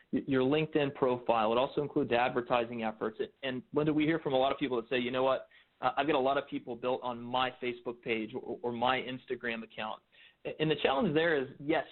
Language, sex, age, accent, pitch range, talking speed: English, male, 30-49, American, 120-140 Hz, 225 wpm